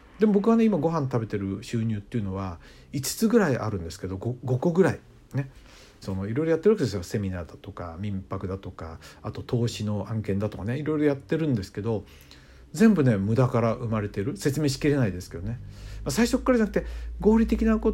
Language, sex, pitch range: Japanese, male, 100-145 Hz